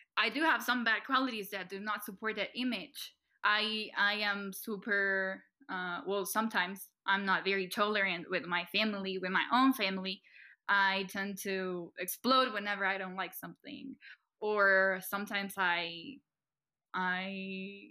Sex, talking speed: female, 145 wpm